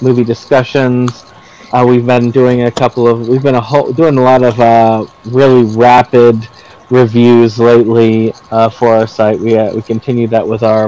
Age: 30-49